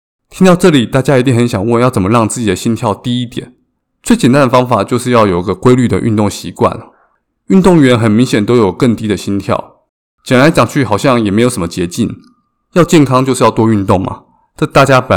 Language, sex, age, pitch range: Chinese, male, 20-39, 105-135 Hz